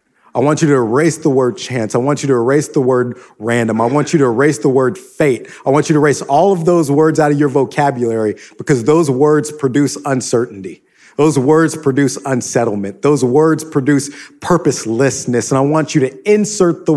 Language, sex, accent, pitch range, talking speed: English, male, American, 125-155 Hz, 200 wpm